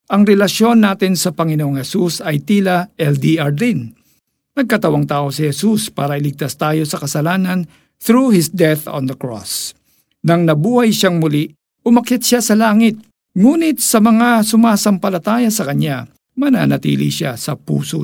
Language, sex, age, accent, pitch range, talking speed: Filipino, male, 50-69, native, 140-200 Hz, 145 wpm